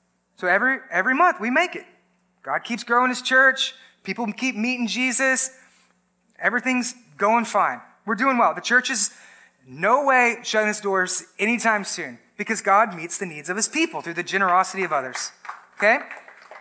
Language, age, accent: English, 30-49, American